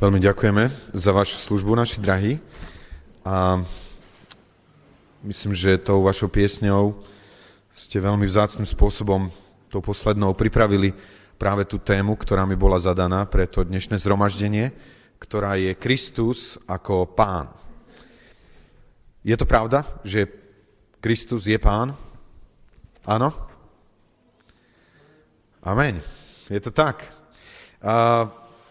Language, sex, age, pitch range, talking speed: Slovak, male, 30-49, 100-135 Hz, 100 wpm